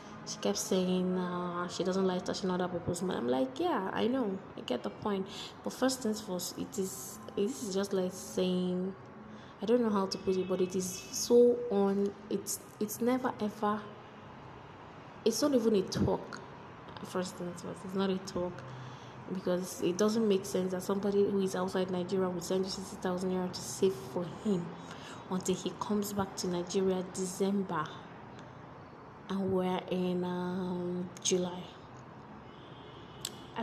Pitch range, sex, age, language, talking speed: 180-205 Hz, female, 20-39, Amharic, 160 wpm